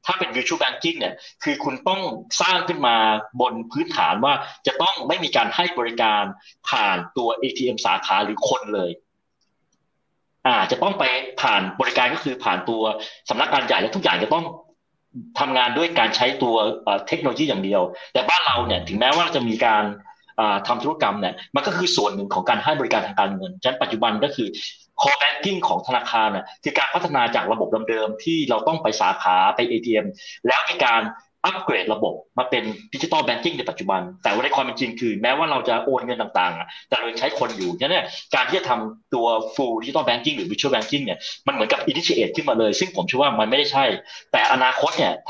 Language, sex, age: Thai, male, 30-49